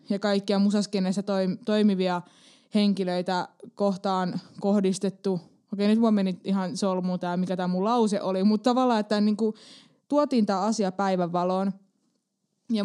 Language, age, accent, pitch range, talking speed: Finnish, 20-39, native, 185-215 Hz, 130 wpm